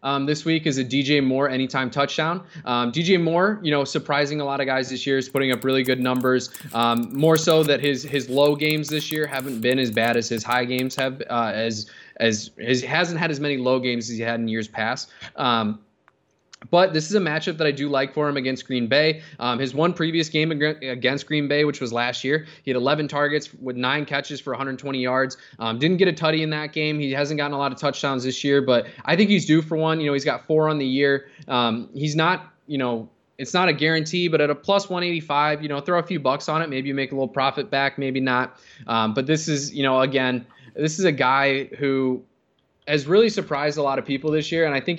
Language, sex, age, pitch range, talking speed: English, male, 20-39, 125-155 Hz, 250 wpm